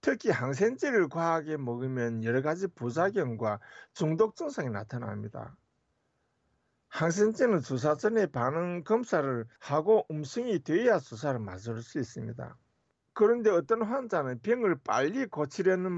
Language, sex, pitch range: Korean, male, 120-200 Hz